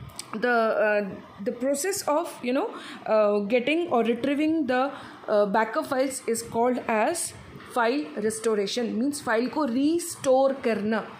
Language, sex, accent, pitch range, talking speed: English, female, Indian, 230-290 Hz, 135 wpm